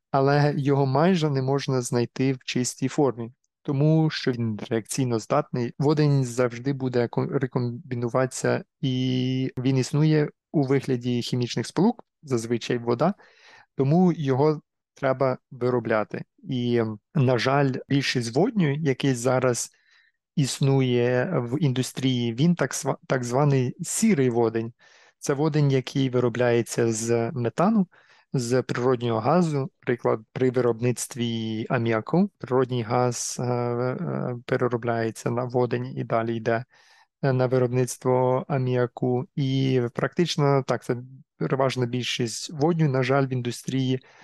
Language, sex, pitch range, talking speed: Ukrainian, male, 120-145 Hz, 110 wpm